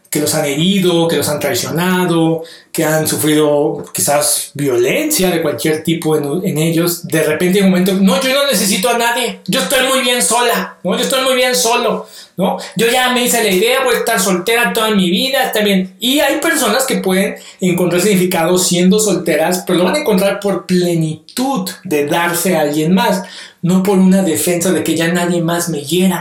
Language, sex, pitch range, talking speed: Spanish, male, 165-225 Hz, 200 wpm